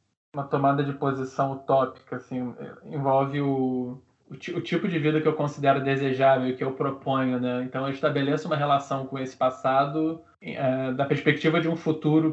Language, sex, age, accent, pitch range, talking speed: Portuguese, male, 20-39, Brazilian, 135-165 Hz, 180 wpm